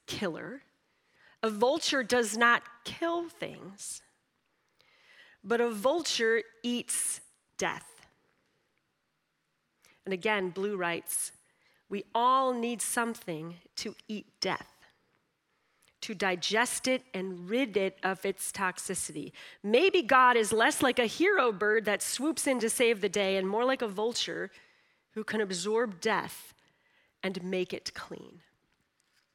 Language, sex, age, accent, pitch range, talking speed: English, female, 40-59, American, 195-255 Hz, 125 wpm